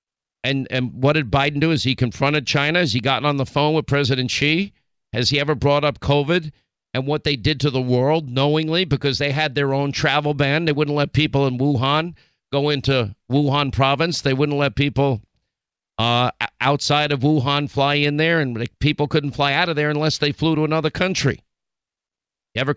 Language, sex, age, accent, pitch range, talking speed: English, male, 50-69, American, 135-155 Hz, 200 wpm